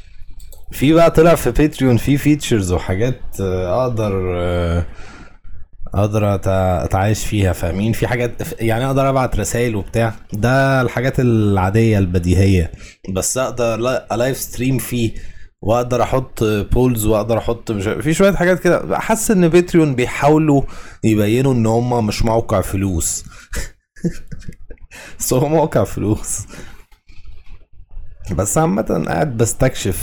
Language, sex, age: Arabic, male, 20-39